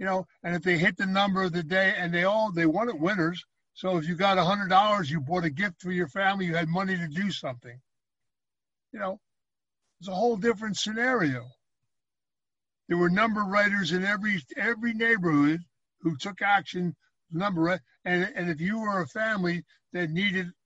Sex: male